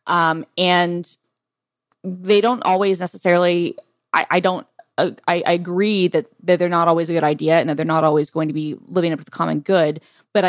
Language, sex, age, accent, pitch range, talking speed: English, female, 20-39, American, 155-185 Hz, 205 wpm